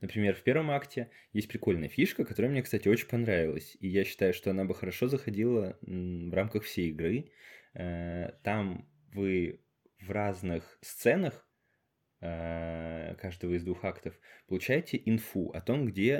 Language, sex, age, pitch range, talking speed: Russian, male, 20-39, 90-115 Hz, 140 wpm